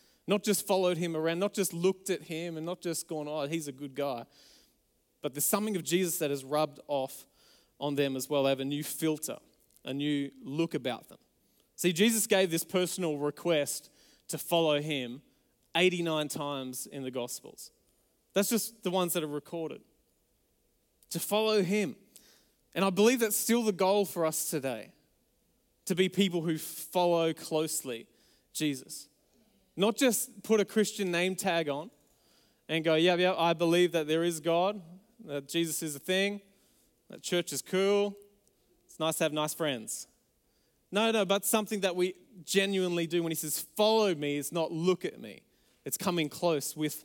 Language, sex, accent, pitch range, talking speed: English, male, Australian, 150-190 Hz, 175 wpm